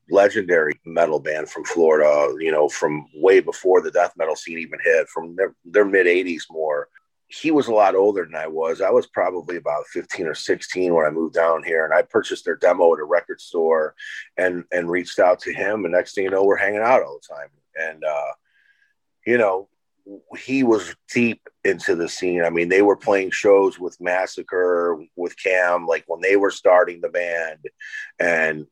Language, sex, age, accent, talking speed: English, male, 30-49, American, 200 wpm